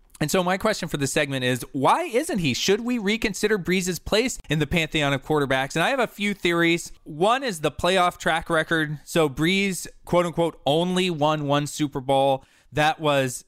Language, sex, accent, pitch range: English, male, American, 135-175 Hz